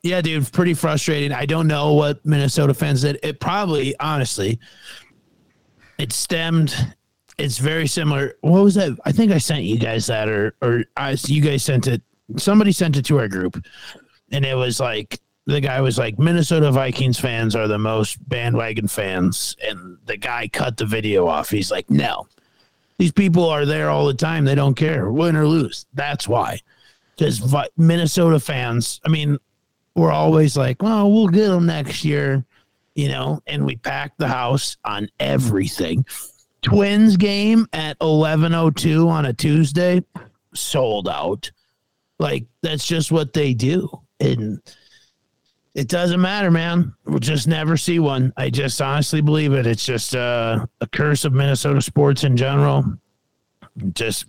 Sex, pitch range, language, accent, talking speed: male, 125-160 Hz, English, American, 165 wpm